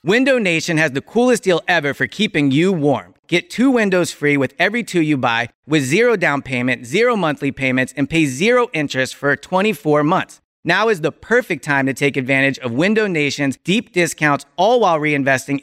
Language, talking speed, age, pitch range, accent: English, 190 wpm, 30-49, 140-195 Hz, American